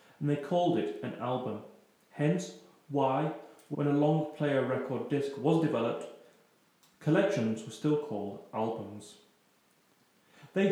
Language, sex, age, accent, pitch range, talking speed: English, male, 30-49, British, 115-165 Hz, 125 wpm